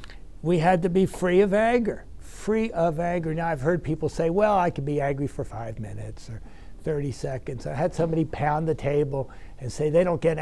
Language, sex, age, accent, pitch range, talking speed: English, male, 60-79, American, 130-180 Hz, 215 wpm